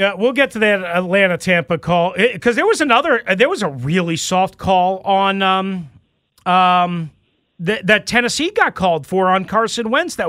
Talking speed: 175 wpm